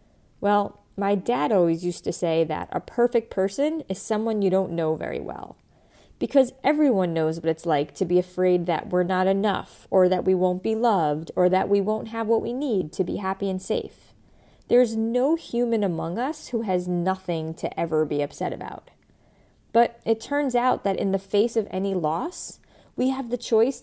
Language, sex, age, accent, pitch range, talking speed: English, female, 30-49, American, 175-245 Hz, 195 wpm